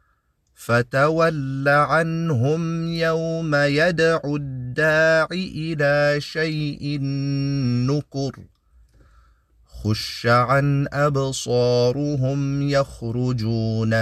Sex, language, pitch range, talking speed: male, English, 125-160 Hz, 50 wpm